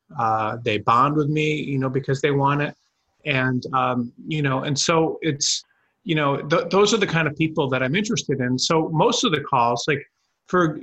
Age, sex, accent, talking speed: 30-49, male, American, 210 wpm